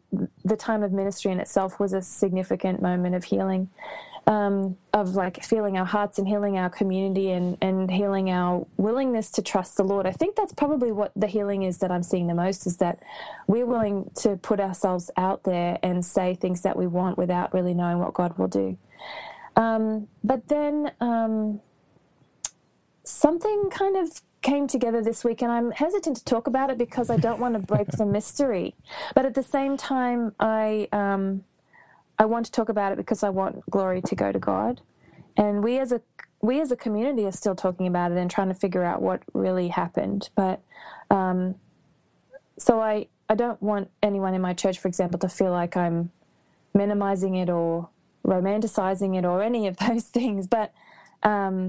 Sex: female